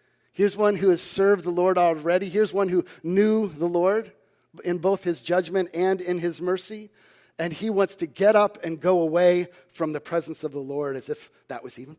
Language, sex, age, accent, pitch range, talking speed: English, male, 50-69, American, 160-195 Hz, 210 wpm